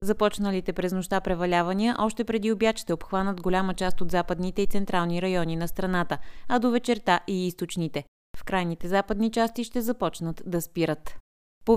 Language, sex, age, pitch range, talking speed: Bulgarian, female, 20-39, 170-220 Hz, 165 wpm